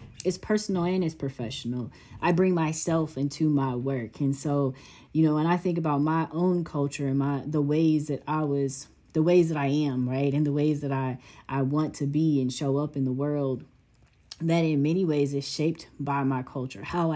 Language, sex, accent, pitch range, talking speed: English, female, American, 135-160 Hz, 210 wpm